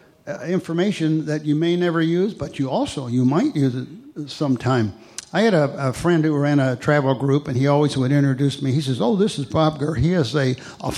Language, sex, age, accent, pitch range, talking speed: English, male, 60-79, American, 130-175 Hz, 230 wpm